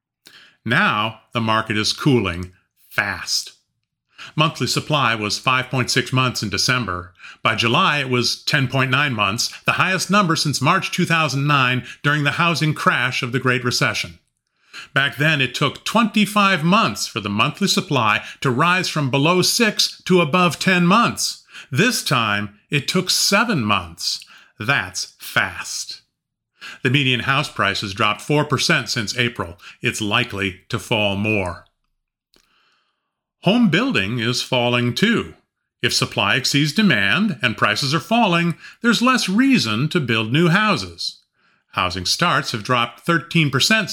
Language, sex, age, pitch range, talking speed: English, male, 40-59, 115-170 Hz, 135 wpm